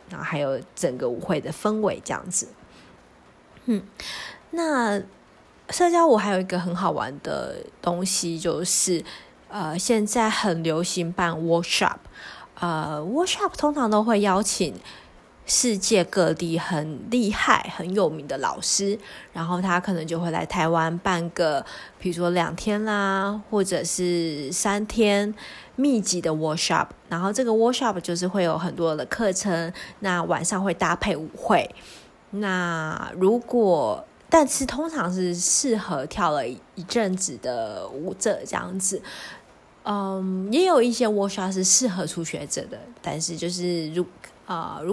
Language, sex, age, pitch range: Chinese, female, 20-39, 175-210 Hz